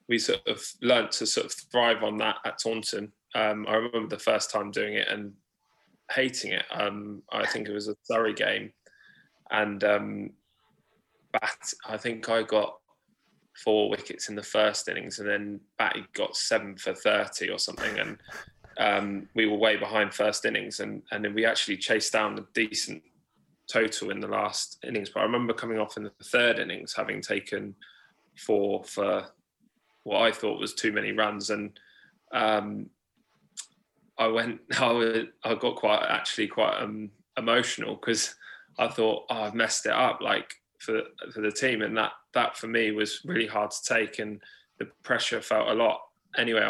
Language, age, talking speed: English, 20-39, 175 wpm